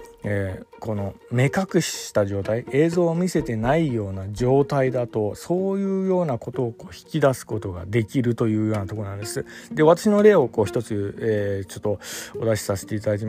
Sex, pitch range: male, 105-155 Hz